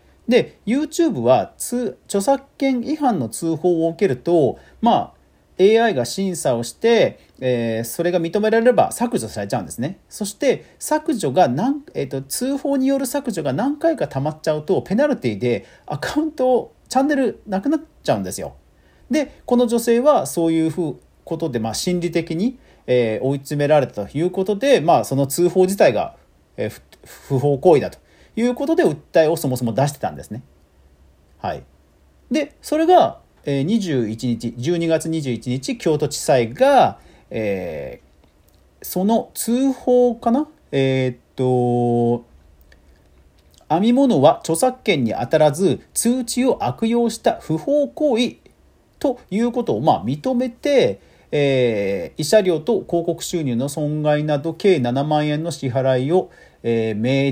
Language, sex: Japanese, male